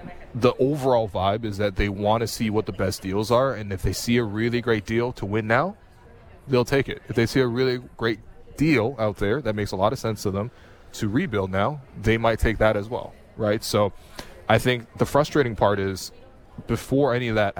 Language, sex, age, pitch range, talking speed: English, male, 20-39, 100-115 Hz, 225 wpm